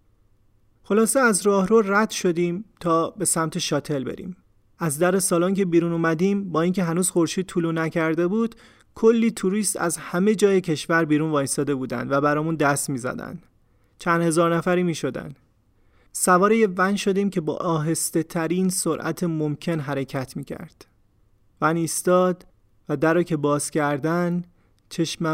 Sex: male